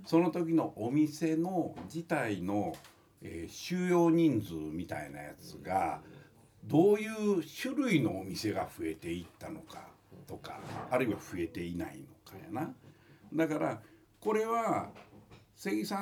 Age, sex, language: 60-79, male, Japanese